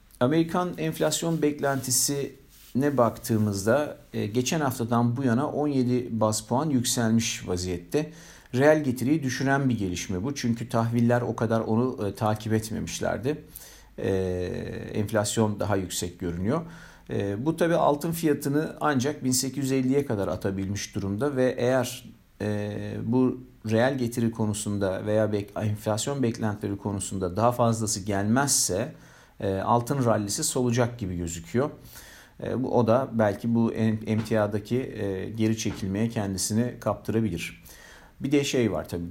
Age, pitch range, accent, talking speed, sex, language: 50-69, 105-125 Hz, native, 110 wpm, male, Turkish